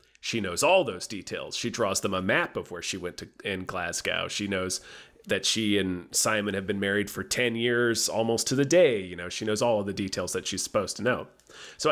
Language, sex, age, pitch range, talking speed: English, male, 30-49, 100-125 Hz, 235 wpm